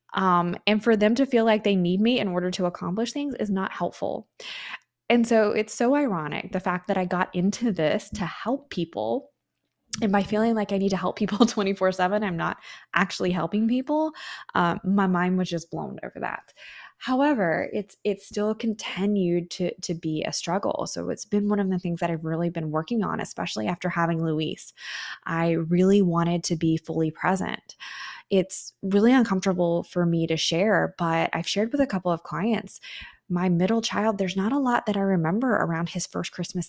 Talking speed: 195 wpm